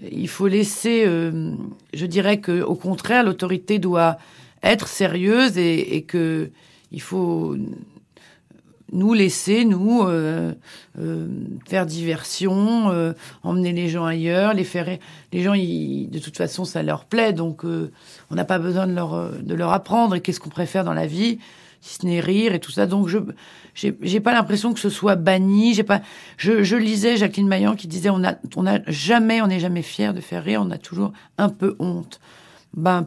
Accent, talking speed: French, 190 wpm